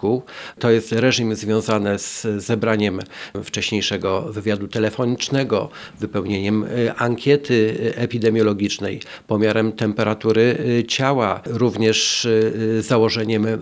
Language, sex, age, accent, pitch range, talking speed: Polish, male, 50-69, native, 110-125 Hz, 75 wpm